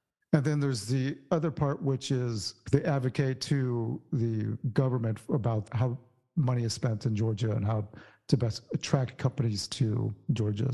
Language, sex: English, male